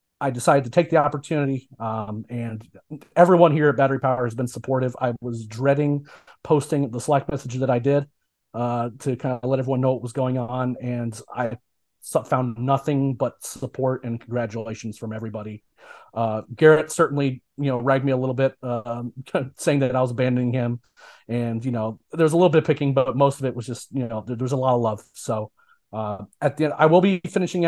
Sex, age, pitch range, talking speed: male, 30-49, 120-145 Hz, 210 wpm